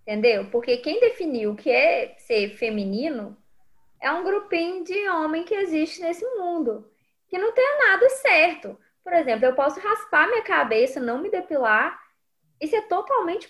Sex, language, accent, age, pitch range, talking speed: female, Portuguese, Brazilian, 20-39, 225-345 Hz, 160 wpm